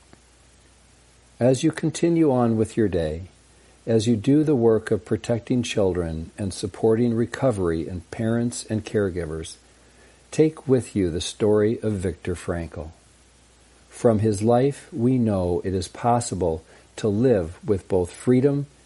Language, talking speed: English, 135 wpm